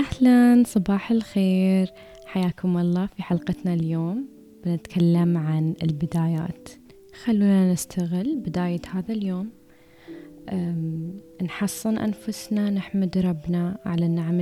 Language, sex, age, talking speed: Arabic, female, 20-39, 90 wpm